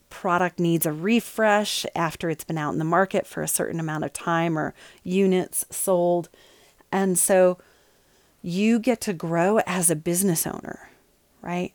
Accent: American